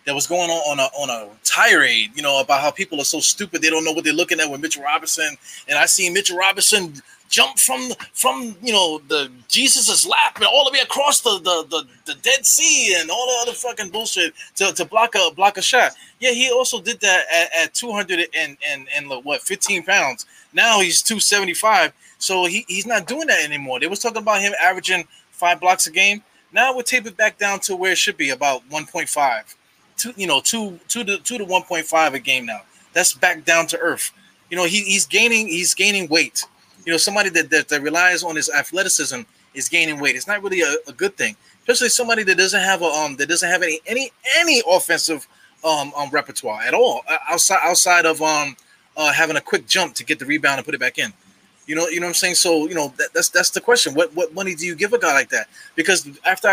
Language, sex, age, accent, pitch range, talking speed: English, male, 20-39, American, 160-220 Hz, 230 wpm